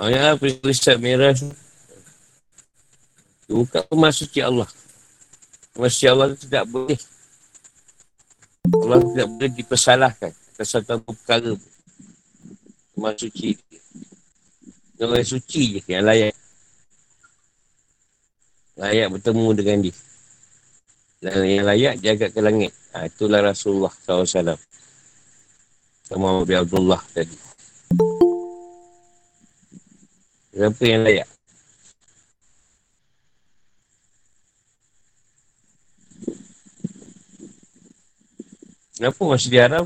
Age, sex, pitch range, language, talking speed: 50-69, male, 105-135 Hz, Malay, 70 wpm